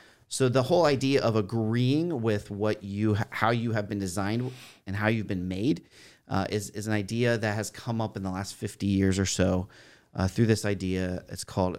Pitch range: 100-125 Hz